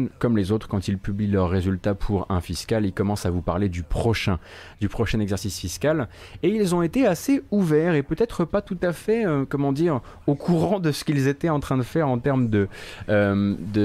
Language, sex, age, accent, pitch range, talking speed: French, male, 30-49, French, 100-135 Hz, 220 wpm